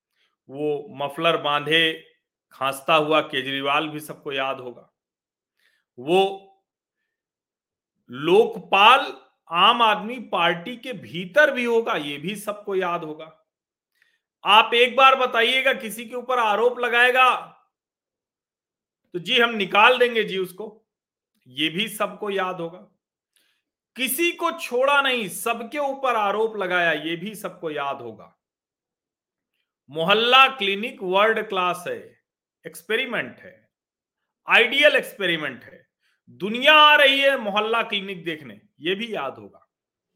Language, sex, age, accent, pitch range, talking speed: Hindi, male, 40-59, native, 160-235 Hz, 120 wpm